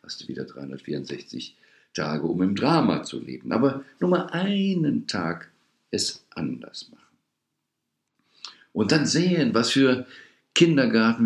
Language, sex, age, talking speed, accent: German, male, 50-69, 130 wpm, German